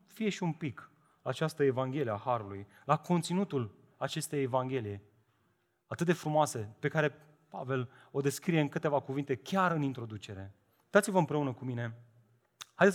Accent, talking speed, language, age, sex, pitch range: native, 150 wpm, Romanian, 30-49, male, 145-245 Hz